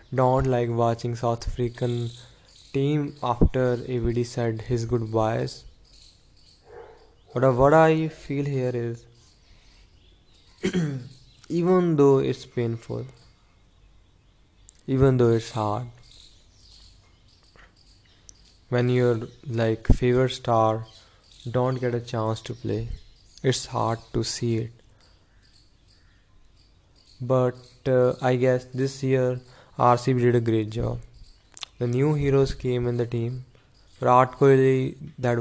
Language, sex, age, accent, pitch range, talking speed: English, male, 20-39, Indian, 110-125 Hz, 105 wpm